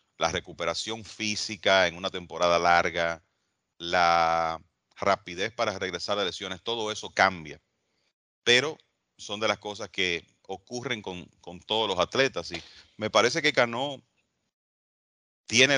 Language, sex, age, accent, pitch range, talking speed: English, male, 40-59, Venezuelan, 85-110 Hz, 130 wpm